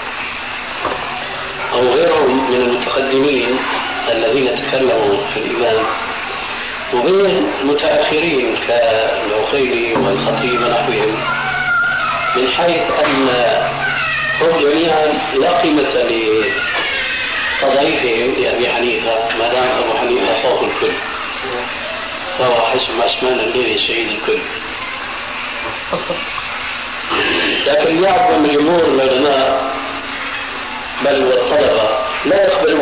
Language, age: Arabic, 40-59